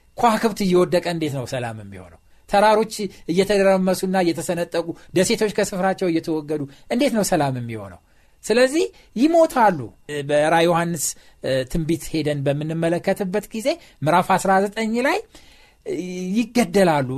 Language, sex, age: Amharic, male, 60-79